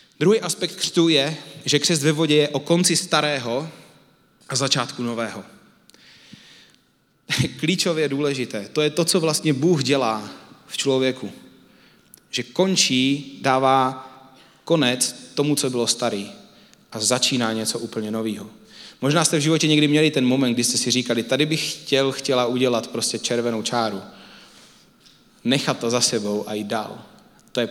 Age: 20-39